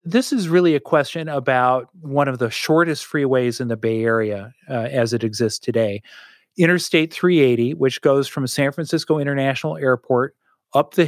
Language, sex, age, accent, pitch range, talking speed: English, male, 40-59, American, 125-160 Hz, 170 wpm